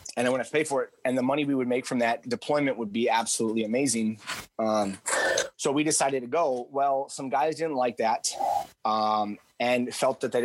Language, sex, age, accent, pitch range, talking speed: English, male, 30-49, American, 115-140 Hz, 210 wpm